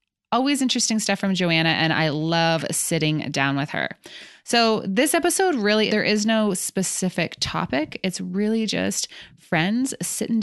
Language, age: English, 20-39